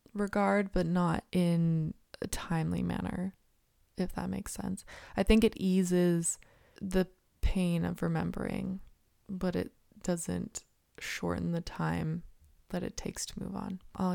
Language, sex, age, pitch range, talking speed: English, female, 20-39, 165-190 Hz, 135 wpm